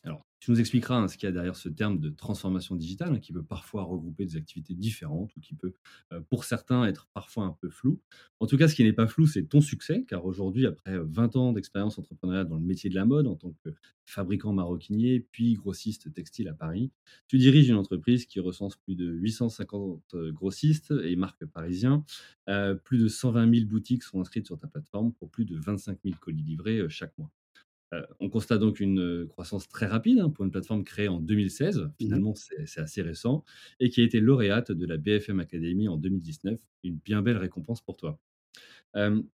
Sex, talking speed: male, 210 wpm